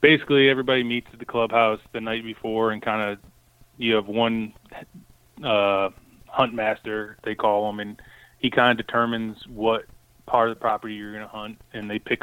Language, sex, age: English, male, 20-39